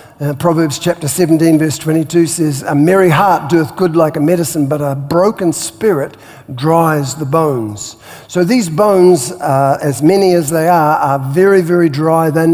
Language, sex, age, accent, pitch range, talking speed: English, male, 50-69, Australian, 150-180 Hz, 170 wpm